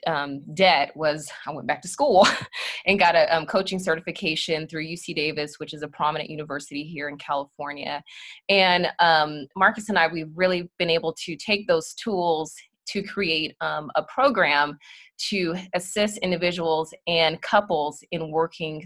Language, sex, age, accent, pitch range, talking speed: English, female, 20-39, American, 160-200 Hz, 160 wpm